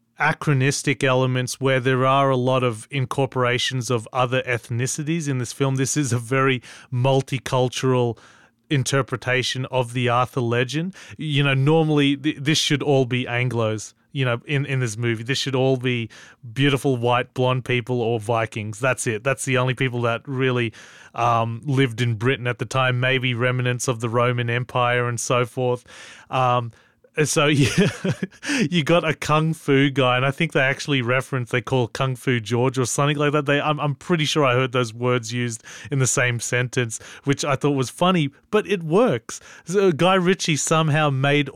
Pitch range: 120-140 Hz